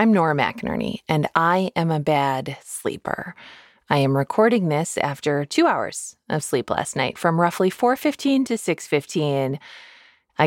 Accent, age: American, 20-39